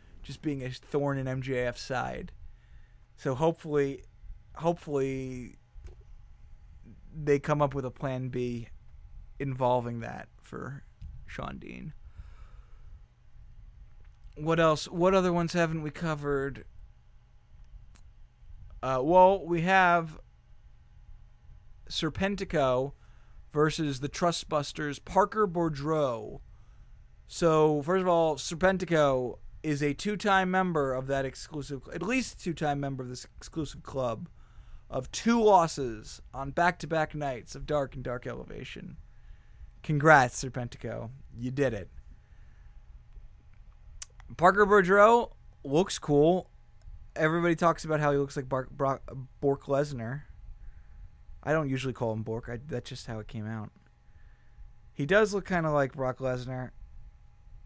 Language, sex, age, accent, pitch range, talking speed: English, male, 20-39, American, 125-165 Hz, 120 wpm